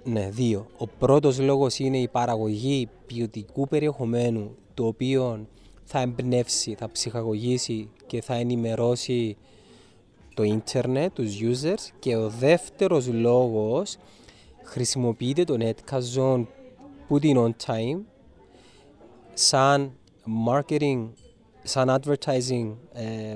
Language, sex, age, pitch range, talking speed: Greek, male, 20-39, 115-140 Hz, 95 wpm